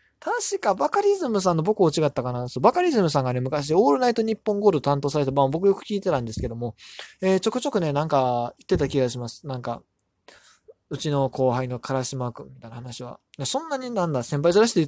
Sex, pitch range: male, 130-210 Hz